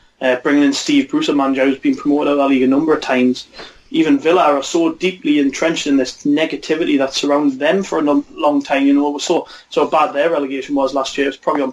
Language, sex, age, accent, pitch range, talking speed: English, male, 20-39, British, 140-175 Hz, 250 wpm